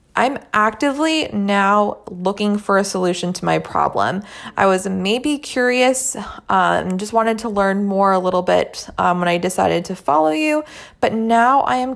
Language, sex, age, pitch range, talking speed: English, female, 20-39, 185-235 Hz, 170 wpm